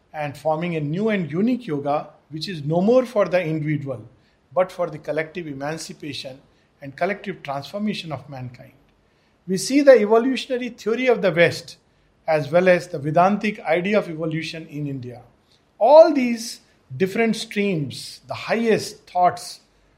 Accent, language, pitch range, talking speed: Indian, English, 150-205 Hz, 145 wpm